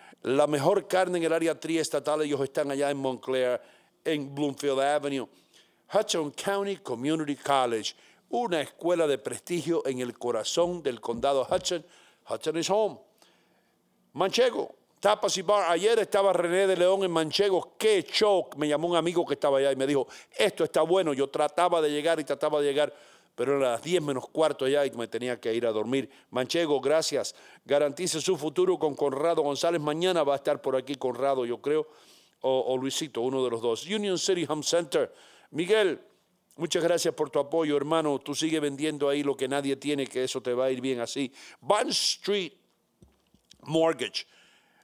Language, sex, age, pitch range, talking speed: English, male, 50-69, 135-170 Hz, 180 wpm